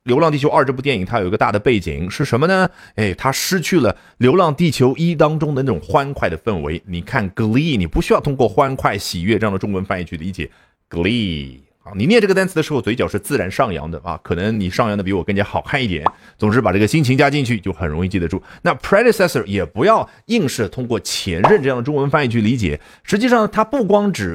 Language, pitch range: Chinese, 95-155 Hz